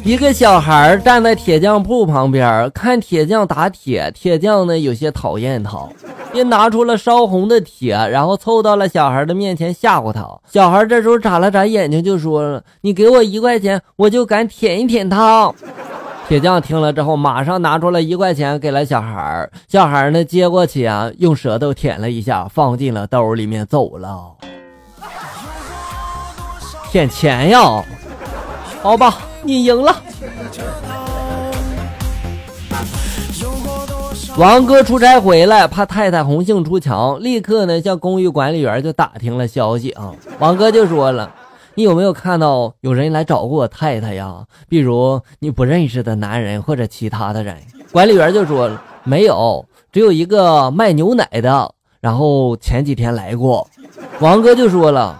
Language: Chinese